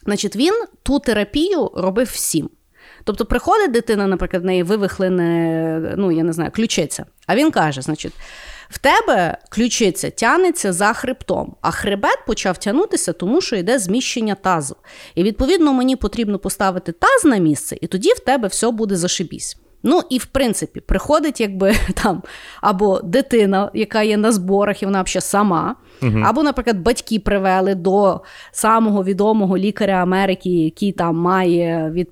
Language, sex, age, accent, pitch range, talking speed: Ukrainian, female, 30-49, native, 180-240 Hz, 155 wpm